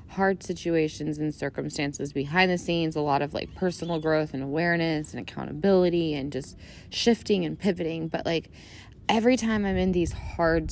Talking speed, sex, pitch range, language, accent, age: 170 wpm, female, 150-185 Hz, English, American, 20-39